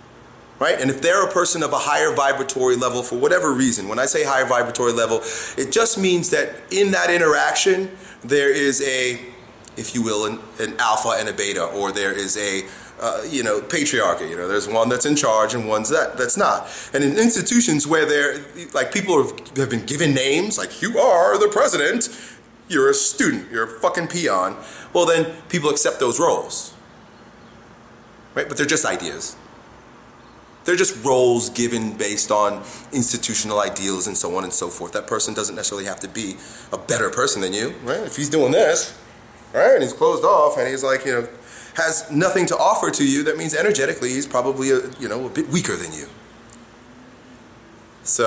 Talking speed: 190 wpm